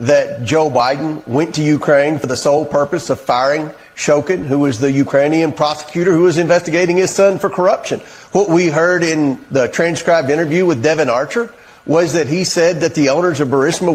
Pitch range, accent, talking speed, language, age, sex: 155-195 Hz, American, 190 wpm, English, 40-59, male